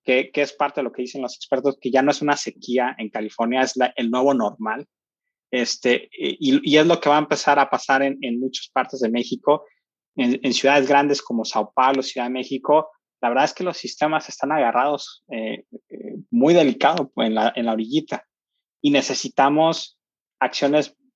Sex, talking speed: male, 200 wpm